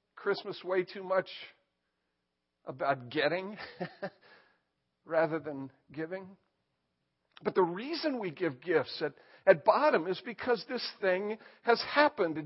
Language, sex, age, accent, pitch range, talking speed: English, male, 50-69, American, 165-240 Hz, 115 wpm